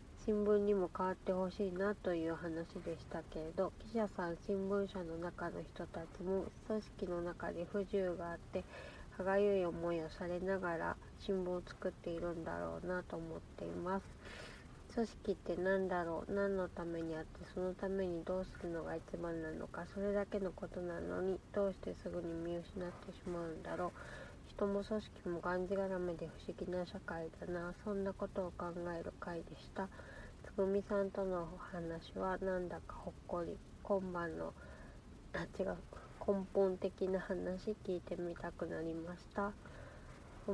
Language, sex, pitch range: Japanese, female, 170-195 Hz